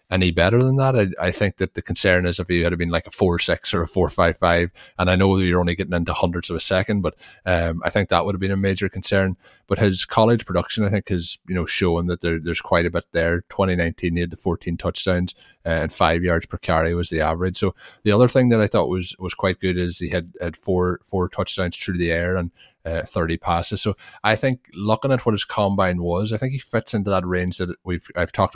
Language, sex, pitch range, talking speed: English, male, 85-100 Hz, 260 wpm